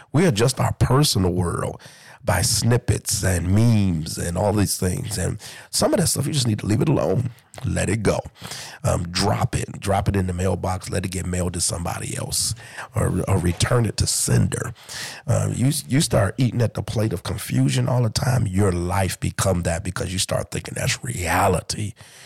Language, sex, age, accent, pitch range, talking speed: English, male, 40-59, American, 95-125 Hz, 195 wpm